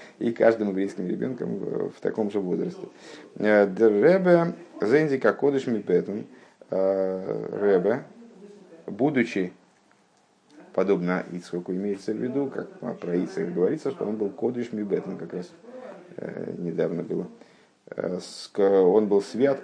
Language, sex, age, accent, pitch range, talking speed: Russian, male, 50-69, native, 100-145 Hz, 100 wpm